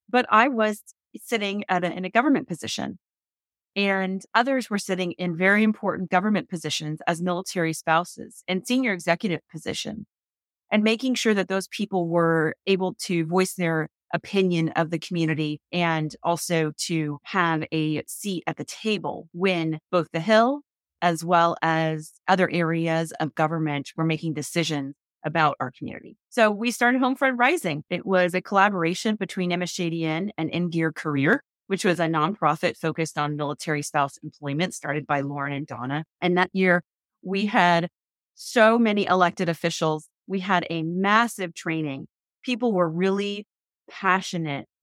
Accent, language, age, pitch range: American, English, 30-49, 155-195 Hz